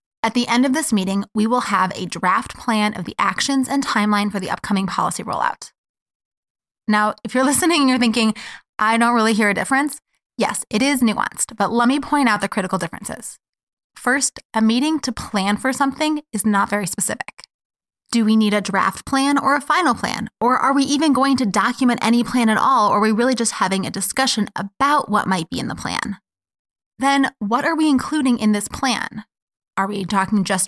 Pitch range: 200-255 Hz